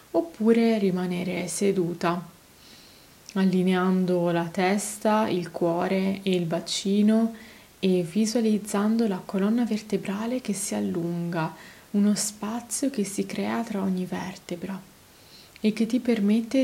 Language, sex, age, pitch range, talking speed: Italian, female, 20-39, 185-230 Hz, 110 wpm